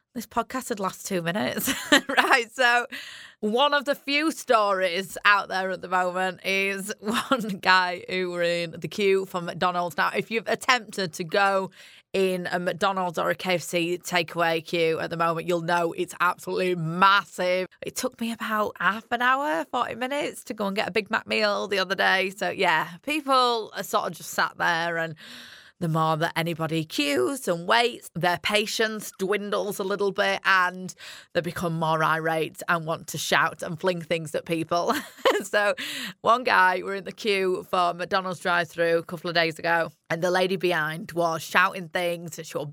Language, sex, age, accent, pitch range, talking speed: English, female, 30-49, British, 170-220 Hz, 185 wpm